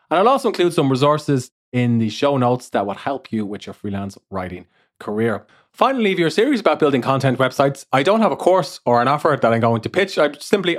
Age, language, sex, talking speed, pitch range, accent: 30-49, English, male, 235 wpm, 110-155 Hz, Irish